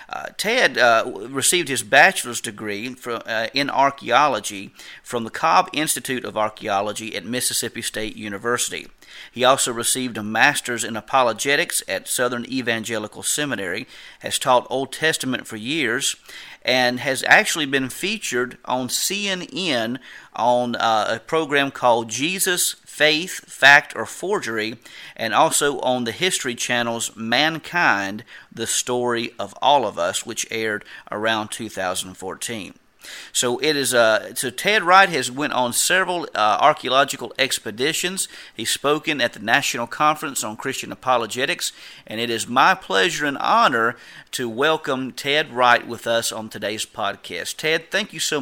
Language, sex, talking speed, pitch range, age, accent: English, male, 135 wpm, 115-150 Hz, 40-59, American